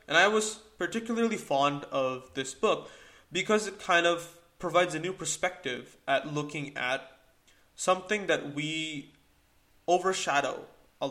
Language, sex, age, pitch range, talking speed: English, male, 20-39, 135-170 Hz, 130 wpm